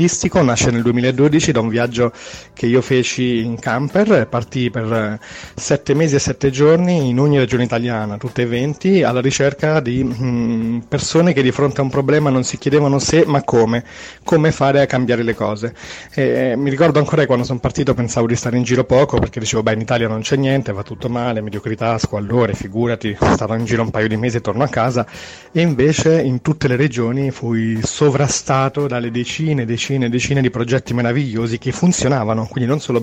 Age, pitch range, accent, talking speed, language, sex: 30-49, 120-135 Hz, native, 200 wpm, Italian, male